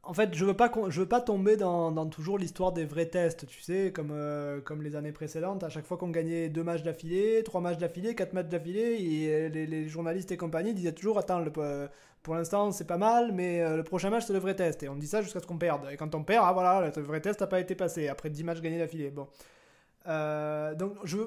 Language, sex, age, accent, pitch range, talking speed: French, male, 20-39, French, 155-195 Hz, 255 wpm